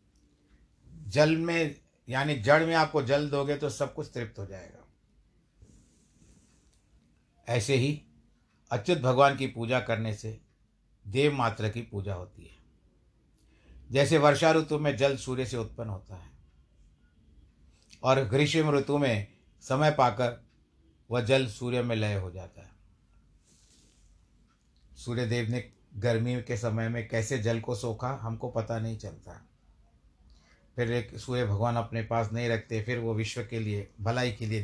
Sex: male